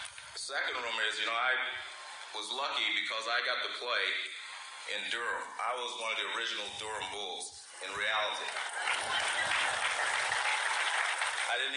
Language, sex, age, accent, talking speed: English, male, 30-49, American, 145 wpm